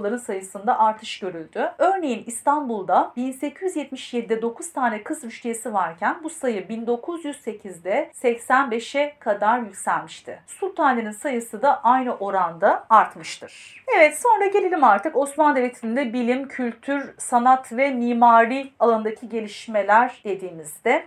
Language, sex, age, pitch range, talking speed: Turkish, female, 40-59, 220-280 Hz, 105 wpm